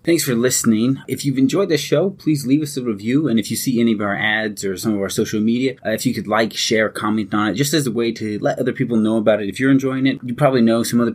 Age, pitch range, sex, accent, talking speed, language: 30-49, 110-135 Hz, male, American, 300 wpm, English